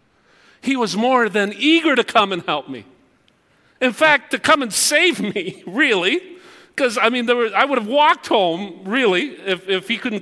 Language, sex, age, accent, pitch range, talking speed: English, male, 50-69, American, 185-255 Hz, 180 wpm